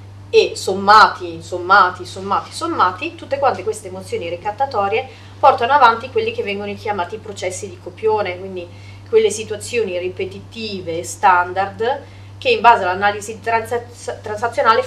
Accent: native